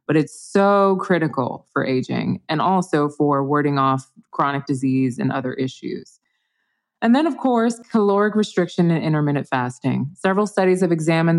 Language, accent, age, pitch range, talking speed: English, American, 20-39, 145-195 Hz, 155 wpm